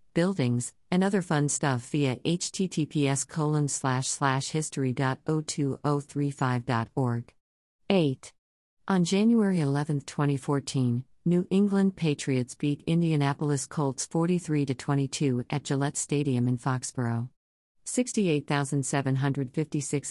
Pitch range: 130-160 Hz